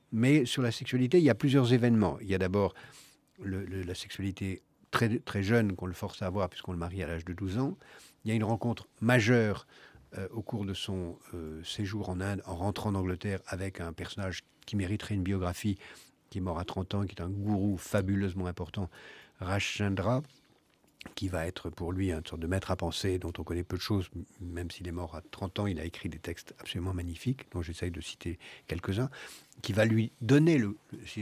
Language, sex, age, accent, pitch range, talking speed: French, male, 50-69, French, 90-115 Hz, 220 wpm